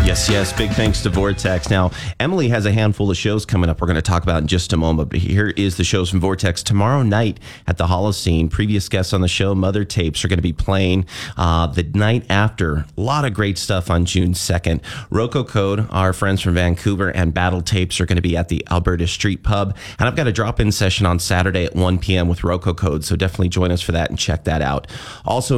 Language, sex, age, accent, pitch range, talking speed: English, male, 30-49, American, 90-105 Hz, 240 wpm